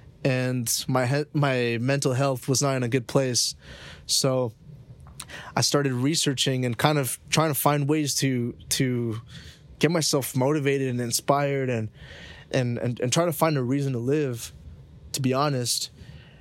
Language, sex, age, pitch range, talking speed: English, male, 20-39, 125-145 Hz, 155 wpm